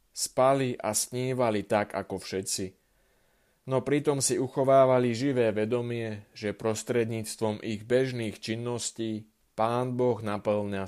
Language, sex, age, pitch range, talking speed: Slovak, male, 30-49, 105-125 Hz, 110 wpm